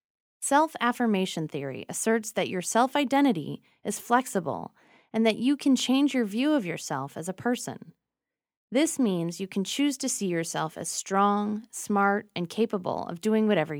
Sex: female